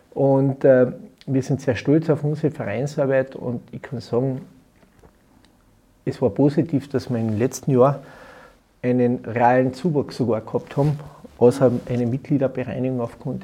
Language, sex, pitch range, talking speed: German, male, 125-145 Hz, 140 wpm